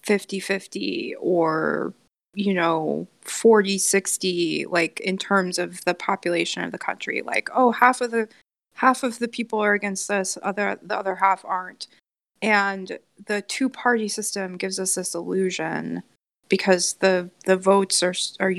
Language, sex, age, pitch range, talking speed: English, female, 20-39, 180-210 Hz, 155 wpm